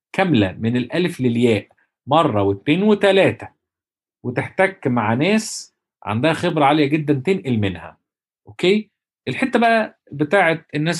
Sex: male